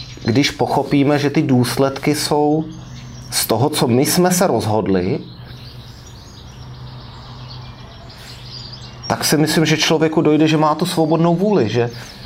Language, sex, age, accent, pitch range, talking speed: Czech, male, 30-49, native, 115-150 Hz, 120 wpm